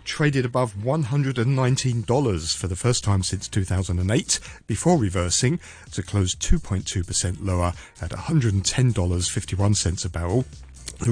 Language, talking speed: English, 110 wpm